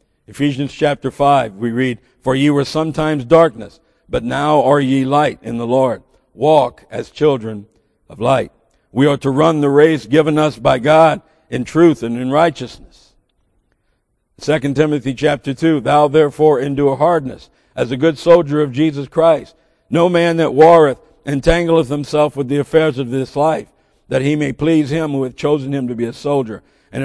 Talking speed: 175 wpm